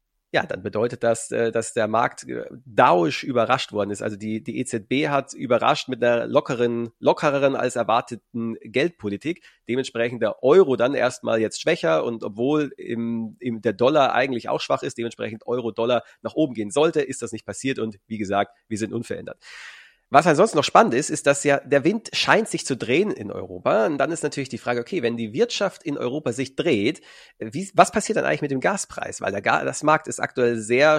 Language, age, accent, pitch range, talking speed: German, 30-49, German, 115-140 Hz, 195 wpm